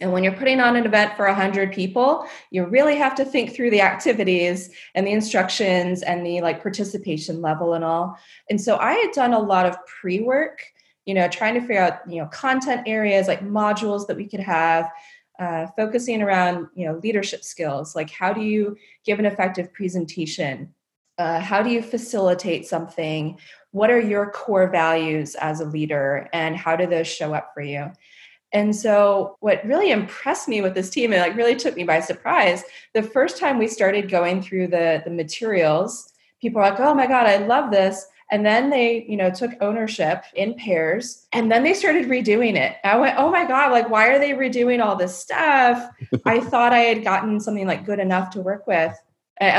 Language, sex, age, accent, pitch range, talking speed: English, female, 20-39, American, 180-240 Hz, 200 wpm